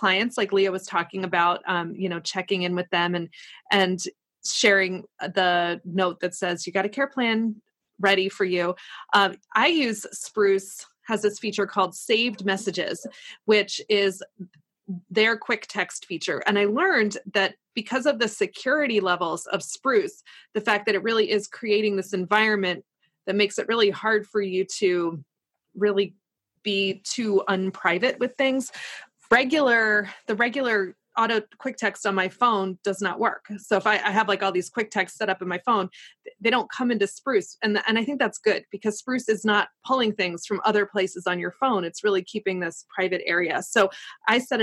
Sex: female